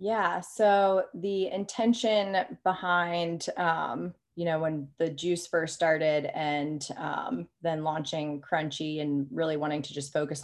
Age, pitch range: 30-49, 145-165 Hz